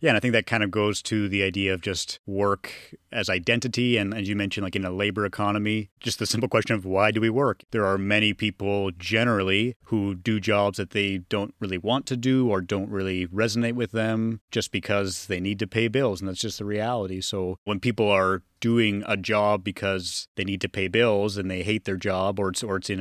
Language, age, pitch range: English, 30-49, 95-110 Hz